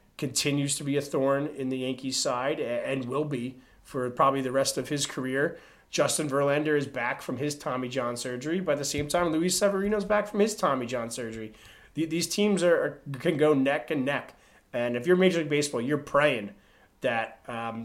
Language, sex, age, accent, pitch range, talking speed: English, male, 30-49, American, 130-160 Hz, 195 wpm